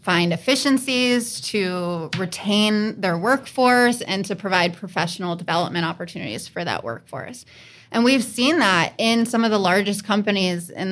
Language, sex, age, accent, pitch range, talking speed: English, female, 20-39, American, 185-225 Hz, 145 wpm